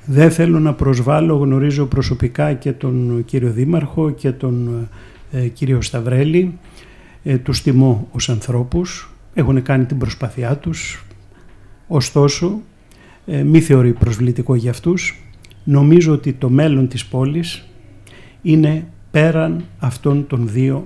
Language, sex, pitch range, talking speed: Greek, male, 120-150 Hz, 115 wpm